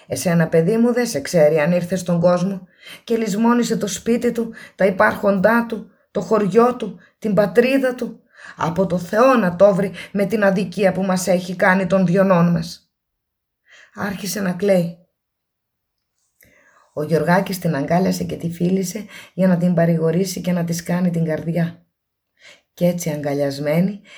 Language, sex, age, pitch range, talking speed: Greek, female, 20-39, 150-185 Hz, 155 wpm